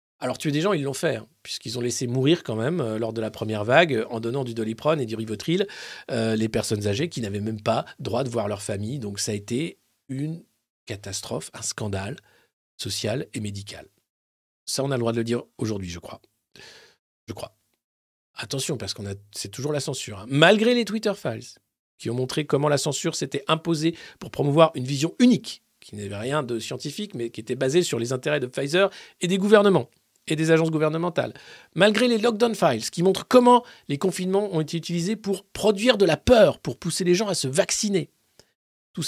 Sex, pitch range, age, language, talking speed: male, 115-170 Hz, 40-59, French, 205 wpm